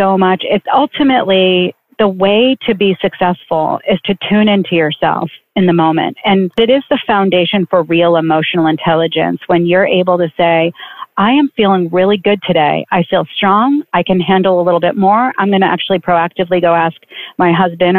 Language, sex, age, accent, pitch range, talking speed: English, female, 40-59, American, 175-205 Hz, 185 wpm